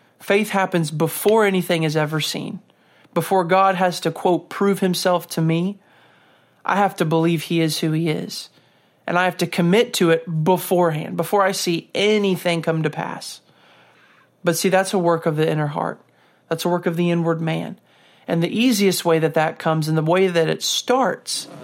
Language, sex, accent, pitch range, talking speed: English, male, American, 165-185 Hz, 190 wpm